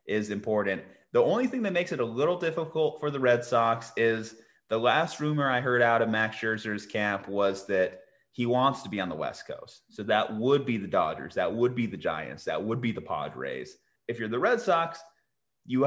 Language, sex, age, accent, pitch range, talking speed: English, male, 30-49, American, 105-140 Hz, 220 wpm